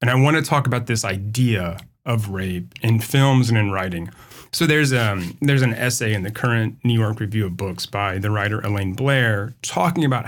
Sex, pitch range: male, 110-135 Hz